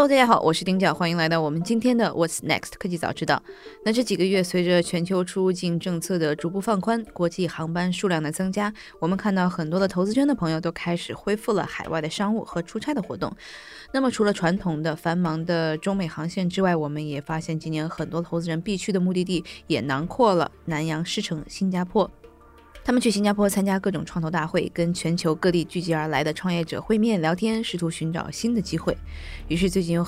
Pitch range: 160-195 Hz